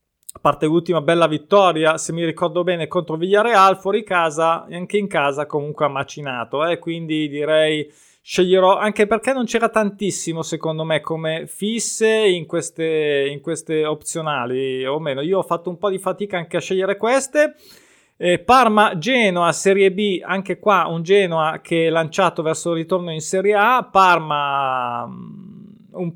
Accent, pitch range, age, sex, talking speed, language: native, 160-195 Hz, 20-39, male, 160 wpm, Italian